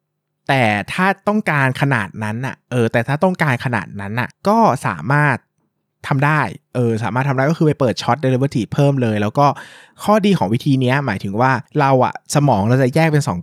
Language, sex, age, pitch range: Thai, male, 20-39, 115-150 Hz